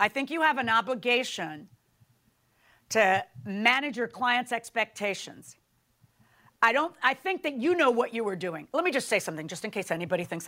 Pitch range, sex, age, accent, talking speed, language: 225-335 Hz, female, 50-69, American, 185 wpm, English